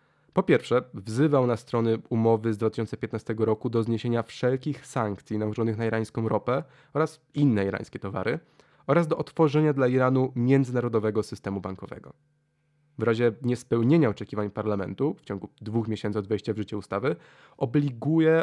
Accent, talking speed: native, 145 wpm